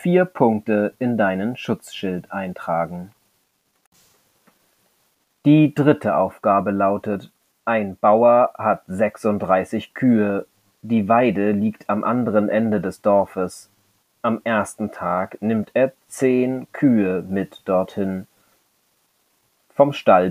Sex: male